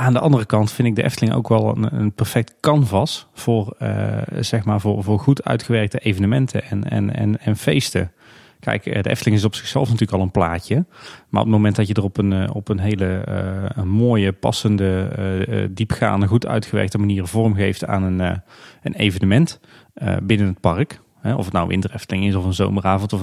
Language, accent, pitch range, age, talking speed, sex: Dutch, Dutch, 100-115 Hz, 30-49, 205 wpm, male